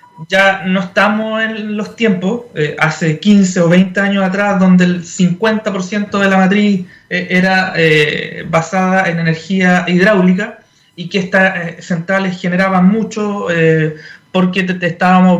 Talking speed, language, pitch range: 135 wpm, Spanish, 165-210 Hz